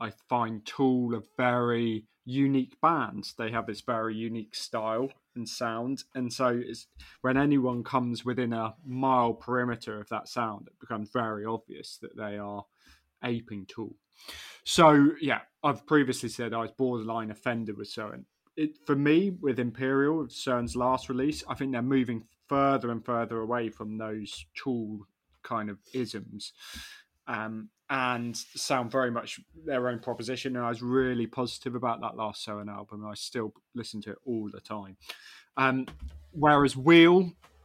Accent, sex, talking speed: British, male, 160 wpm